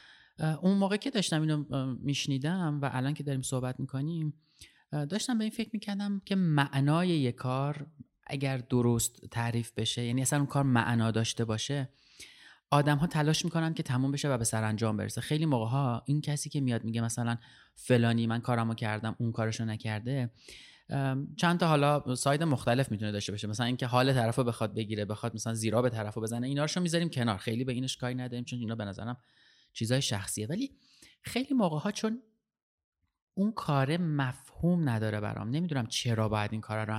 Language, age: Persian, 20-39